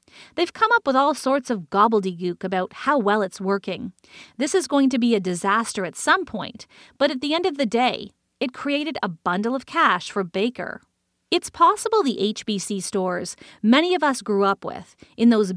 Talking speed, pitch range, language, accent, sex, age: 195 wpm, 205-275 Hz, English, American, female, 40-59